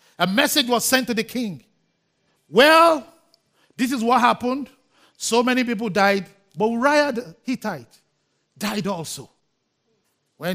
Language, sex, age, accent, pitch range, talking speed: English, male, 50-69, Nigerian, 155-255 Hz, 130 wpm